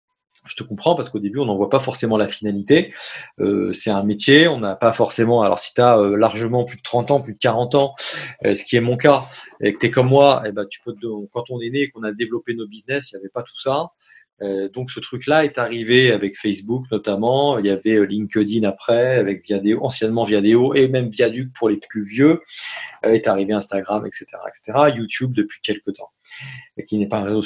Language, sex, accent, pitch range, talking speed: French, male, French, 105-135 Hz, 240 wpm